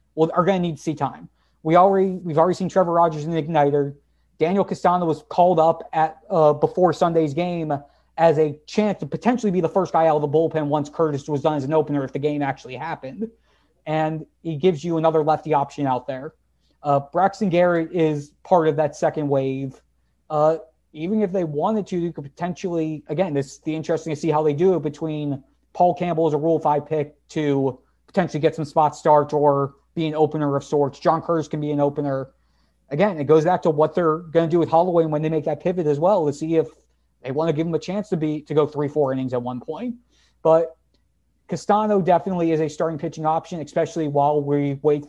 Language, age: English, 30-49